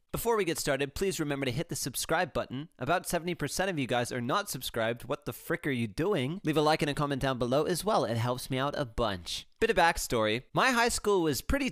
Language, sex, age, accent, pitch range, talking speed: English, male, 30-49, American, 120-175 Hz, 250 wpm